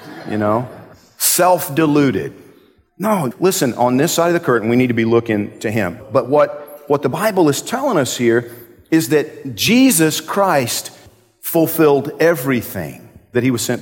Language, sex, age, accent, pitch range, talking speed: English, male, 50-69, American, 115-165 Hz, 160 wpm